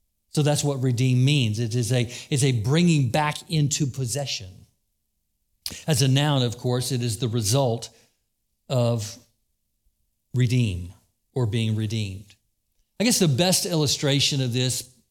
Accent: American